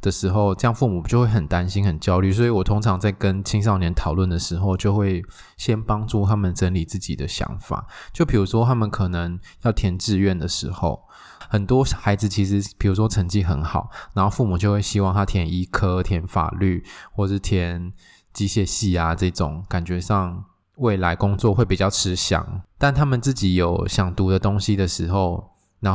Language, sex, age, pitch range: Chinese, male, 20-39, 90-105 Hz